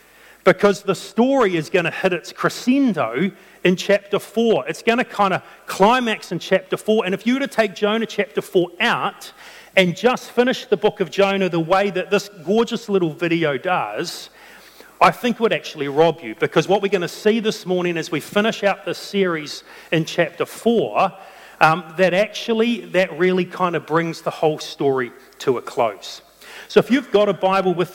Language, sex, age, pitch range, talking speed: English, male, 40-59, 165-205 Hz, 195 wpm